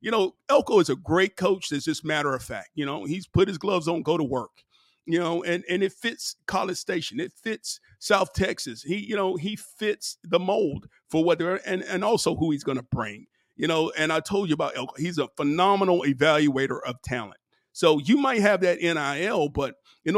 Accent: American